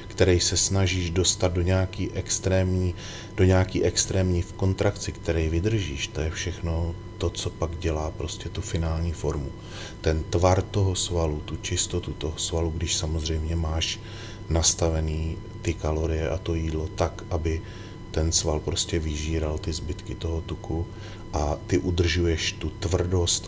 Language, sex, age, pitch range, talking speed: Slovak, male, 30-49, 80-95 Hz, 145 wpm